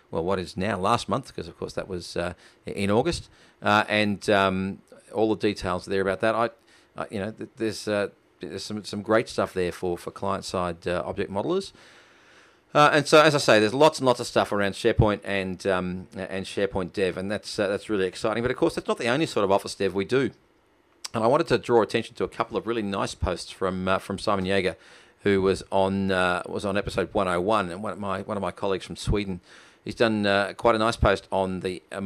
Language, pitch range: English, 95-110 Hz